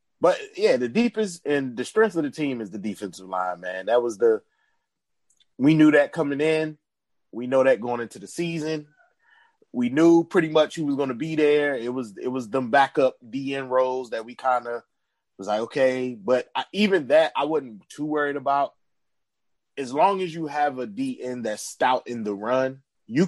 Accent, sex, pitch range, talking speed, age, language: American, male, 110-145 Hz, 200 wpm, 20-39, English